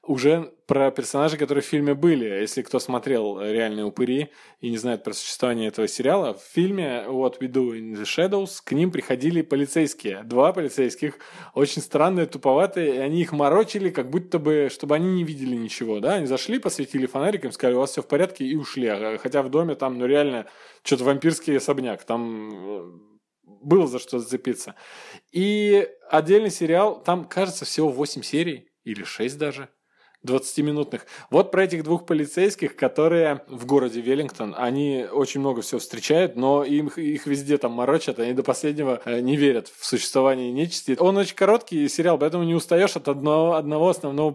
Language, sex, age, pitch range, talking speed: Russian, male, 20-39, 130-160 Hz, 170 wpm